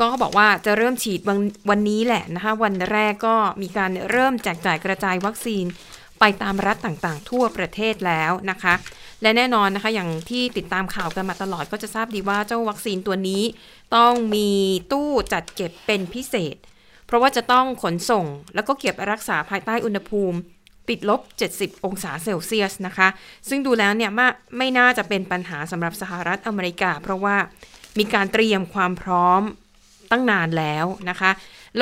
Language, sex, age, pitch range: Thai, female, 20-39, 185-230 Hz